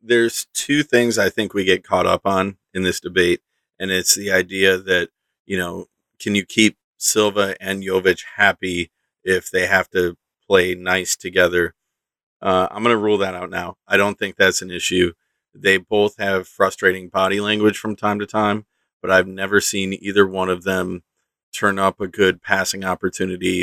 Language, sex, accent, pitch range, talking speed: English, male, American, 95-105 Hz, 185 wpm